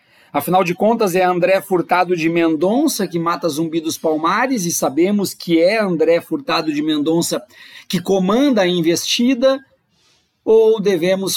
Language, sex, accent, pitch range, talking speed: Portuguese, male, Brazilian, 155-200 Hz, 145 wpm